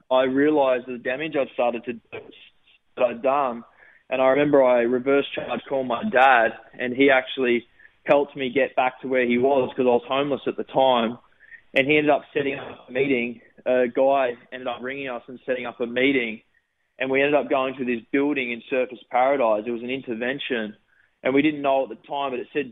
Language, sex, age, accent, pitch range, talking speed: English, male, 20-39, Australian, 125-140 Hz, 210 wpm